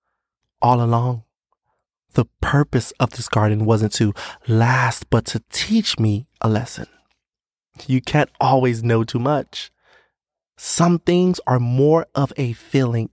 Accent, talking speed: American, 135 wpm